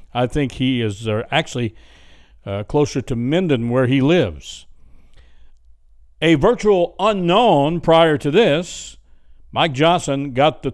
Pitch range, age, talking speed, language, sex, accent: 115-165 Hz, 60-79, 115 wpm, English, male, American